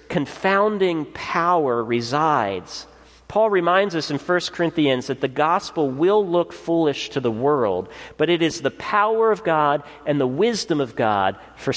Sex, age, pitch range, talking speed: male, 40-59, 115-160 Hz, 160 wpm